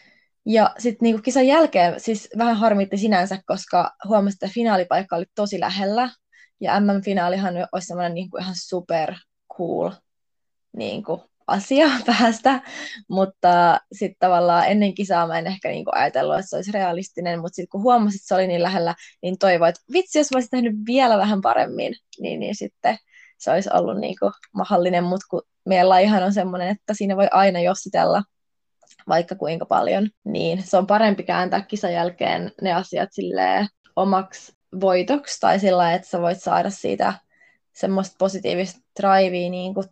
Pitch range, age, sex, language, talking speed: 180-215 Hz, 20-39, female, Finnish, 155 wpm